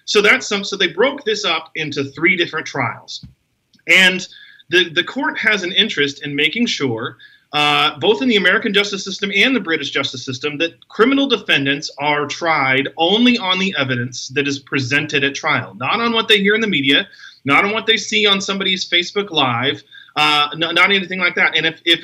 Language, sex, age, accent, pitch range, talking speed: English, male, 30-49, American, 145-210 Hz, 200 wpm